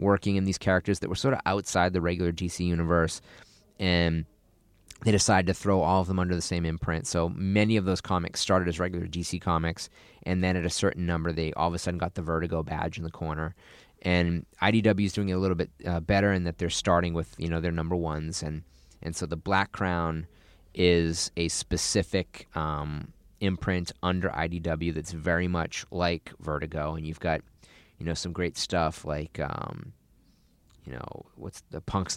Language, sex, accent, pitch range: English, male, American, 80-95 Hz